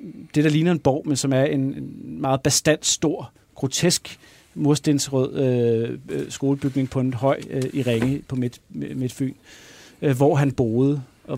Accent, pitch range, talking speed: native, 125-145 Hz, 165 wpm